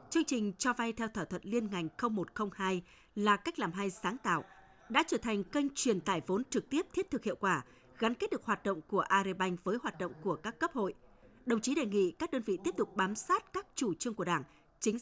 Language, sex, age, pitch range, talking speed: Vietnamese, female, 20-39, 185-240 Hz, 240 wpm